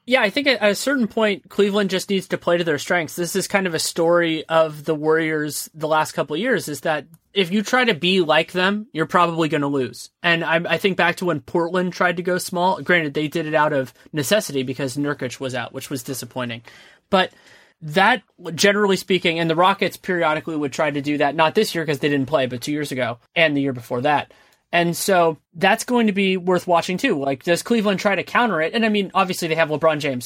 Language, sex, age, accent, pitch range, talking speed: English, male, 30-49, American, 150-185 Hz, 240 wpm